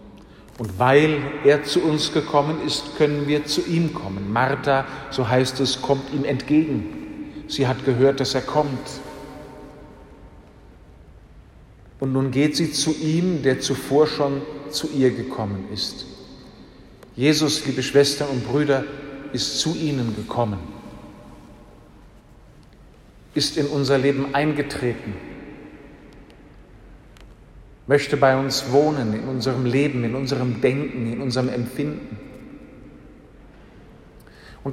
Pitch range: 125-150 Hz